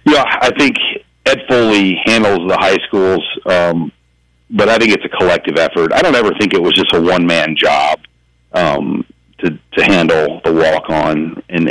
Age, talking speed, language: 40-59, 175 wpm, English